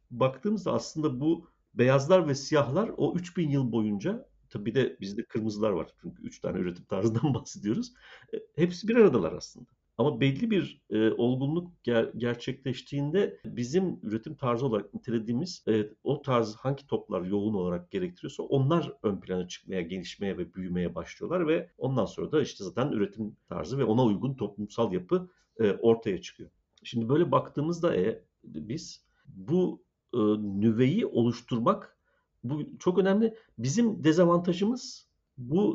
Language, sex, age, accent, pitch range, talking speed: Turkish, male, 50-69, native, 115-170 Hz, 140 wpm